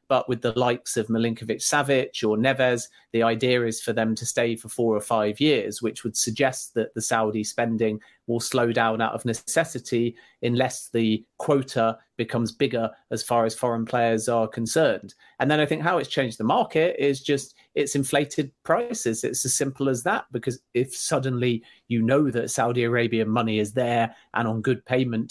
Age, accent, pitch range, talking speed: 30-49, British, 115-135 Hz, 185 wpm